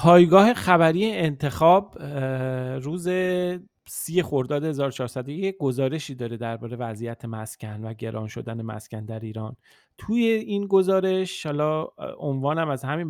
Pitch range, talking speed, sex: 125-160 Hz, 115 wpm, male